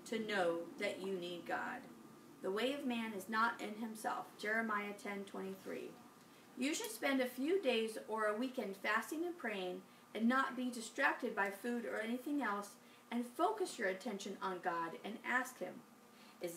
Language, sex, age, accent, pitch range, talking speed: English, female, 40-59, American, 215-280 Hz, 175 wpm